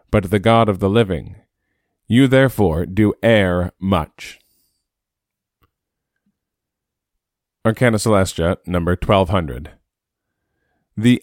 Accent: American